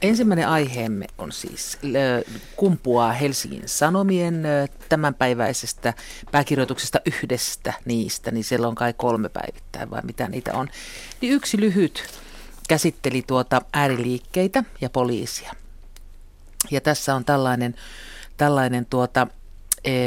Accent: native